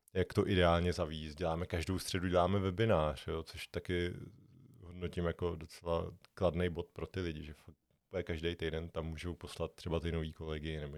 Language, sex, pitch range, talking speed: Czech, male, 80-90 Hz, 170 wpm